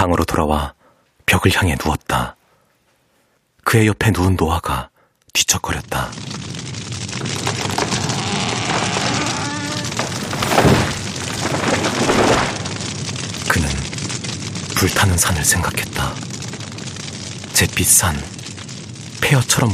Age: 40-59